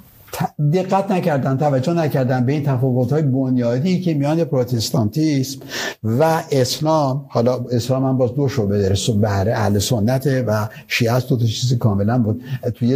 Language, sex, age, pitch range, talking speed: Persian, male, 60-79, 120-175 Hz, 150 wpm